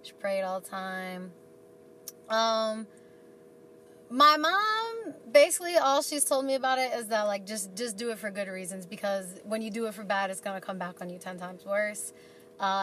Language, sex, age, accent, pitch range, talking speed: English, female, 20-39, American, 180-225 Hz, 200 wpm